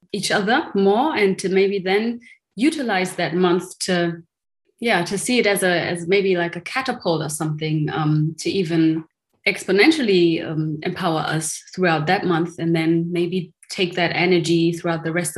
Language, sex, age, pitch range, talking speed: English, female, 20-39, 165-200 Hz, 170 wpm